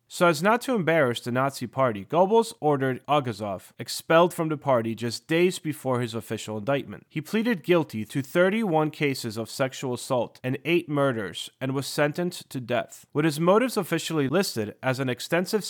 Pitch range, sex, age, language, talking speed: 120-165 Hz, male, 30-49, English, 175 wpm